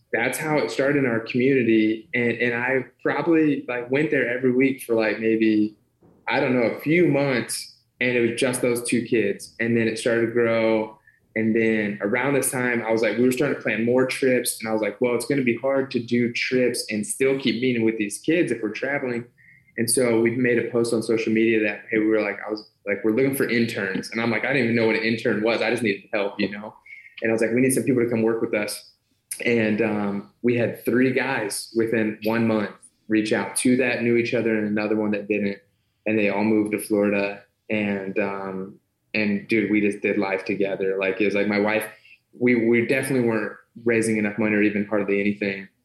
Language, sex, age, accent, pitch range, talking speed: English, male, 20-39, American, 105-120 Hz, 235 wpm